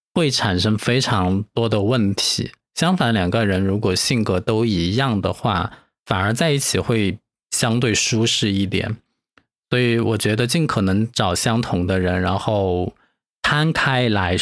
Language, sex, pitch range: Chinese, male, 95-125 Hz